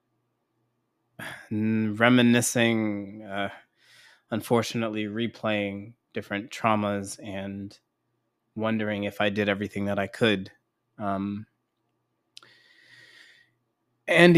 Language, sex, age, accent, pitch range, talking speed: English, male, 20-39, American, 100-115 Hz, 70 wpm